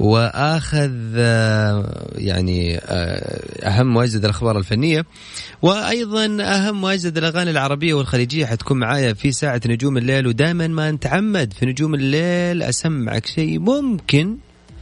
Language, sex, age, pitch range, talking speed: Arabic, male, 30-49, 105-155 Hz, 110 wpm